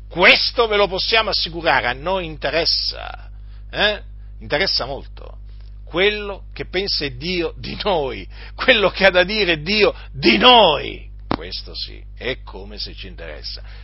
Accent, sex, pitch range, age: native, male, 120-200 Hz, 50-69